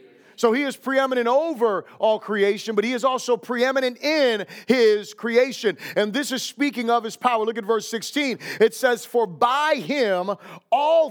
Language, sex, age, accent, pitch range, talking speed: English, male, 30-49, American, 210-255 Hz, 175 wpm